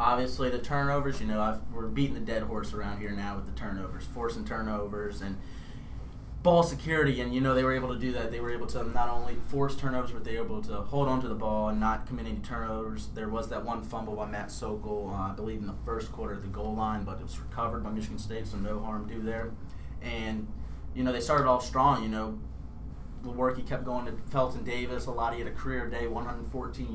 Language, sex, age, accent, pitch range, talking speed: English, male, 30-49, American, 105-130 Hz, 245 wpm